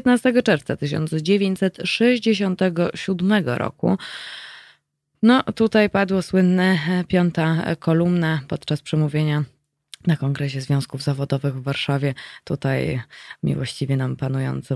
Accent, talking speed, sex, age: native, 90 wpm, female, 20-39